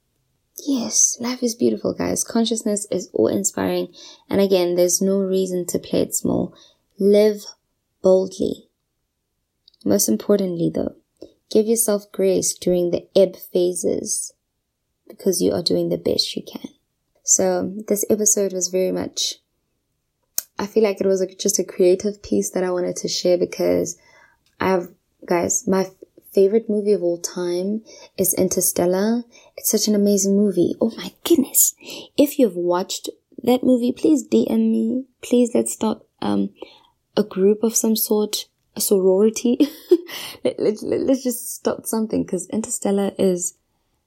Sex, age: female, 20-39